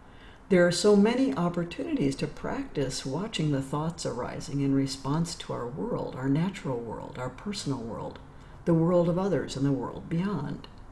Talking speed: 165 wpm